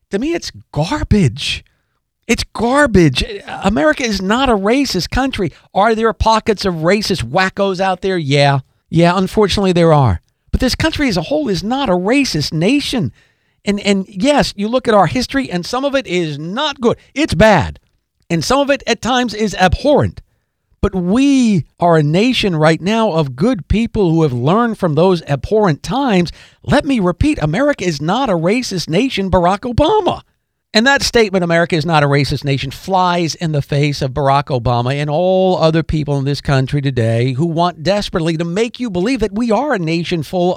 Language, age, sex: English, 50-69, male